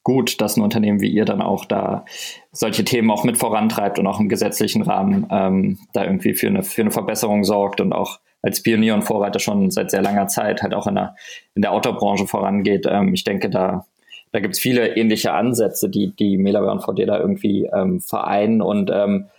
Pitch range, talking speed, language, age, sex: 105-120 Hz, 205 wpm, German, 20-39, male